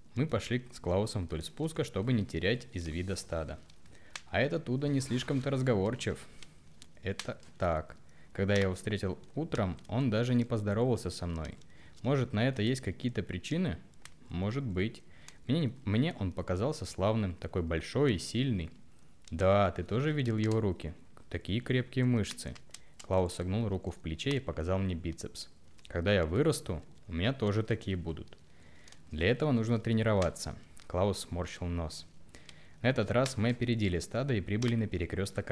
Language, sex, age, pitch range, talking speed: Russian, male, 20-39, 85-120 Hz, 155 wpm